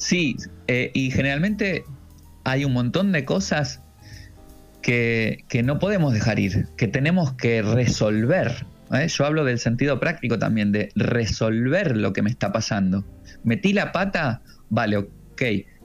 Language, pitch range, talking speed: Spanish, 110-140 Hz, 140 wpm